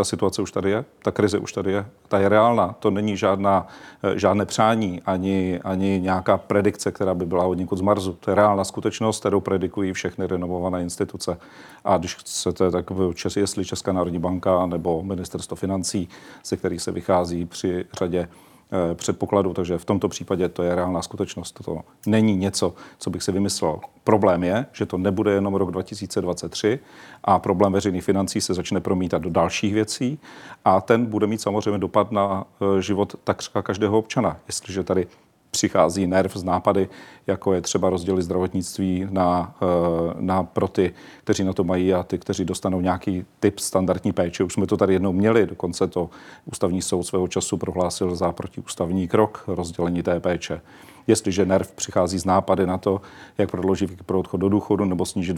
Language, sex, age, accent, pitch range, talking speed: Czech, male, 40-59, native, 90-100 Hz, 175 wpm